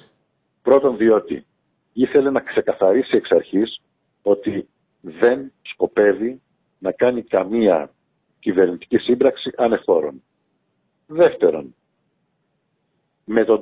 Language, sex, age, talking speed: Greek, male, 60-79, 85 wpm